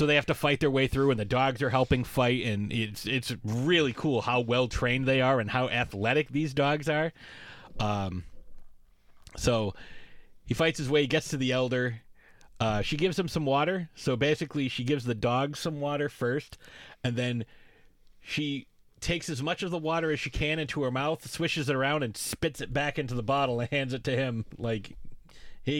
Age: 30-49